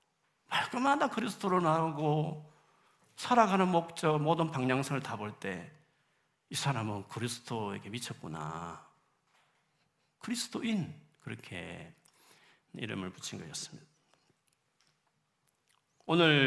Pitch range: 120-175 Hz